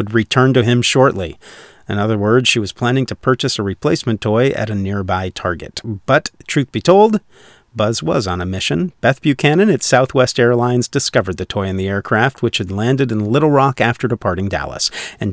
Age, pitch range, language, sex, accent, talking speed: 40-59, 105-140 Hz, English, male, American, 190 wpm